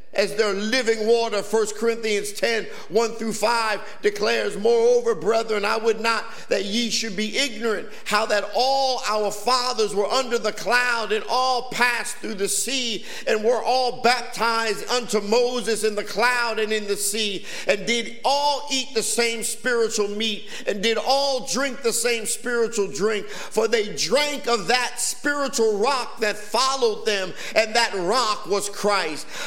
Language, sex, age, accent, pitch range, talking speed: English, male, 50-69, American, 205-245 Hz, 165 wpm